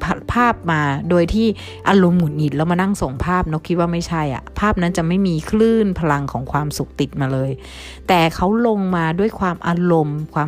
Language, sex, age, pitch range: Thai, female, 60-79, 140-175 Hz